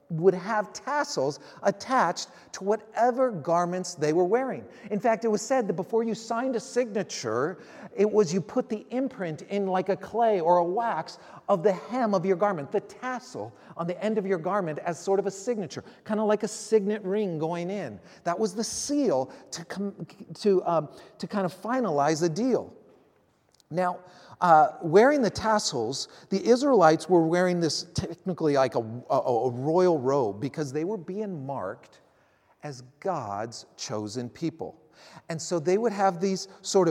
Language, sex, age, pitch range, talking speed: English, male, 40-59, 165-215 Hz, 175 wpm